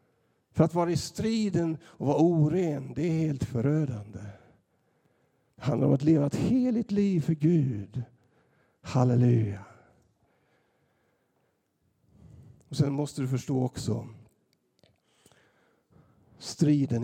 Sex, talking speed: male, 100 wpm